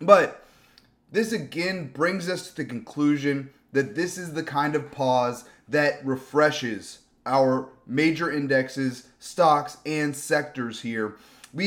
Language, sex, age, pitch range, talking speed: English, male, 30-49, 130-160 Hz, 130 wpm